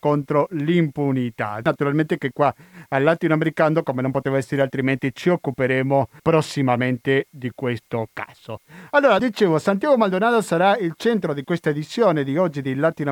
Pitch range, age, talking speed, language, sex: 140-180 Hz, 50-69, 145 wpm, Italian, male